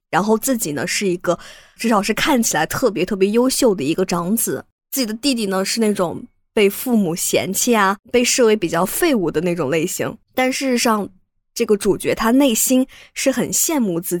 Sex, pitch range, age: female, 180-230 Hz, 20-39